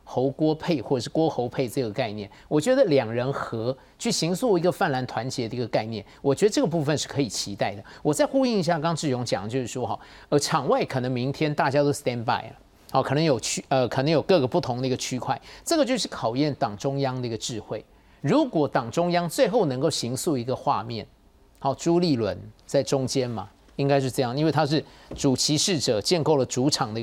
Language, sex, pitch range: Chinese, male, 125-165 Hz